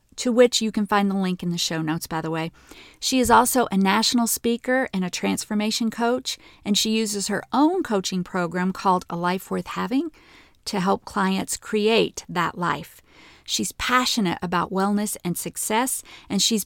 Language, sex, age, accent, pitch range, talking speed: English, female, 40-59, American, 185-240 Hz, 180 wpm